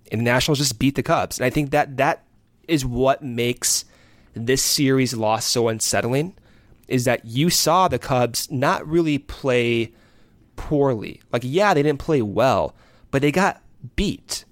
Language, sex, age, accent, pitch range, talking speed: English, male, 30-49, American, 115-150 Hz, 165 wpm